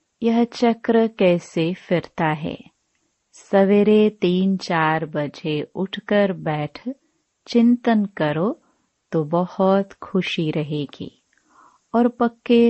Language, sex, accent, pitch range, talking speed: Hindi, female, native, 155-215 Hz, 90 wpm